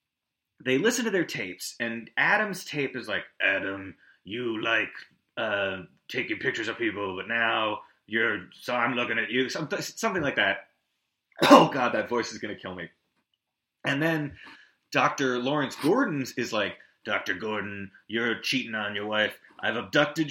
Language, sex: English, male